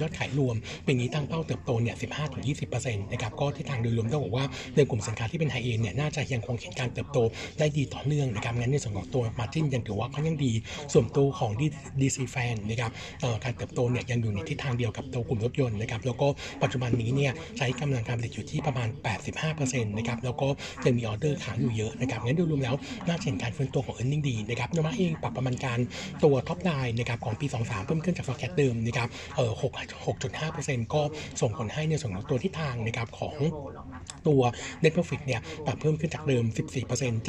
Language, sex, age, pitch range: Thai, male, 60-79, 120-145 Hz